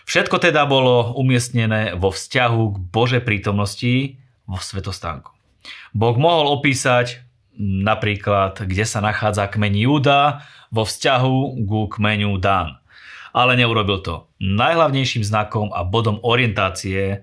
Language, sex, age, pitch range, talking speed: Slovak, male, 30-49, 100-130 Hz, 115 wpm